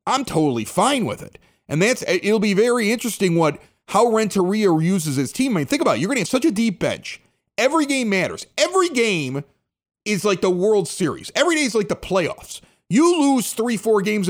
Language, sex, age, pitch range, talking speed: English, male, 30-49, 160-210 Hz, 215 wpm